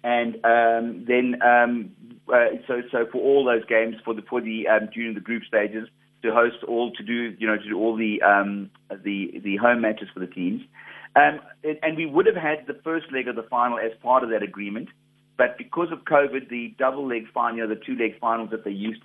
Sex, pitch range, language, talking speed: male, 105-125 Hz, English, 225 wpm